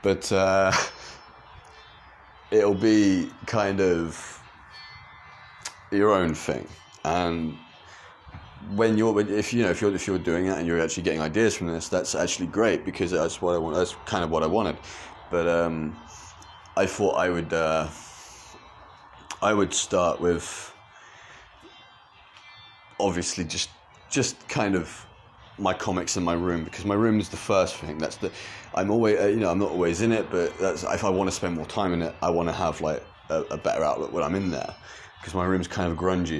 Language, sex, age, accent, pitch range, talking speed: English, male, 30-49, British, 85-100 Hz, 185 wpm